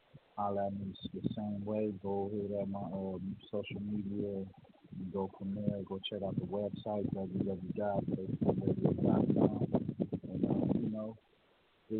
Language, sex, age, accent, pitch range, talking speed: English, male, 40-59, American, 100-115 Hz, 135 wpm